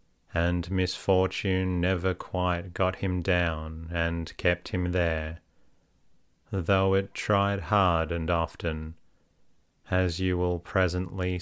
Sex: male